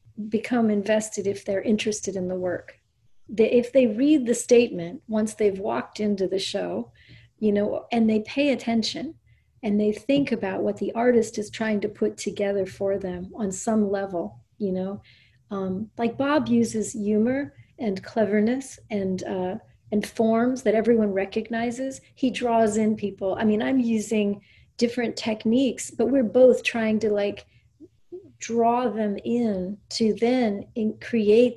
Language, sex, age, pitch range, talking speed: English, female, 40-59, 200-240 Hz, 150 wpm